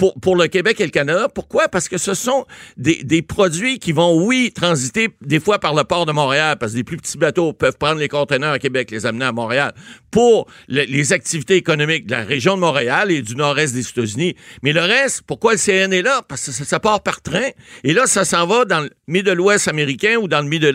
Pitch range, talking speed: 140-195 Hz, 250 wpm